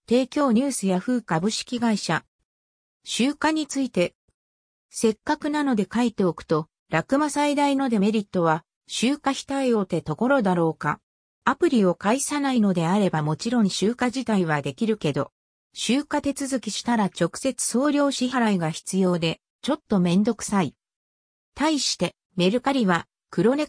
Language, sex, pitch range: Japanese, female, 180-265 Hz